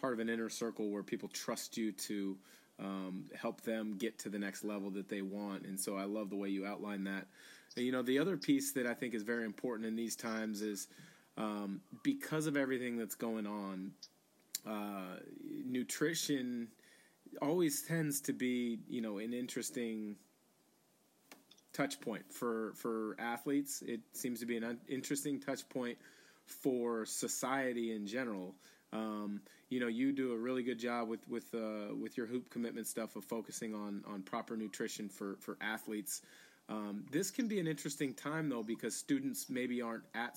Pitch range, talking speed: 105-125 Hz, 175 wpm